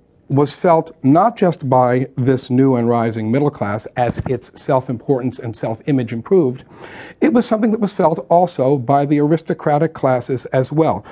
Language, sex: English, male